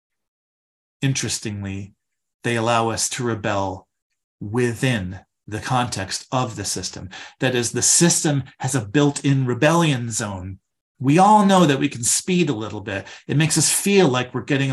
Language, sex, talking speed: English, male, 155 wpm